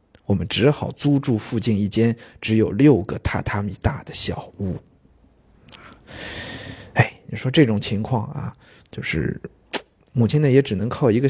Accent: native